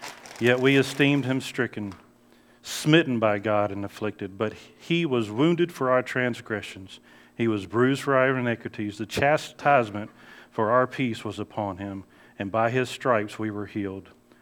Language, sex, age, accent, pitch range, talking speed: English, male, 40-59, American, 100-120 Hz, 160 wpm